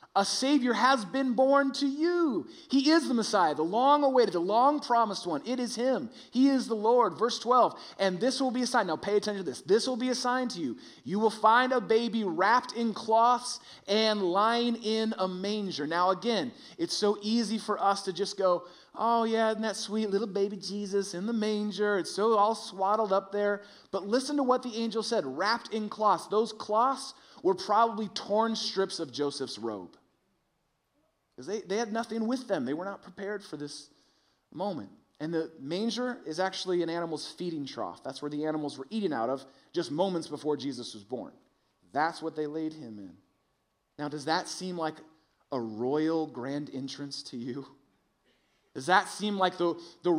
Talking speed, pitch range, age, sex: 195 wpm, 175-230 Hz, 30-49, male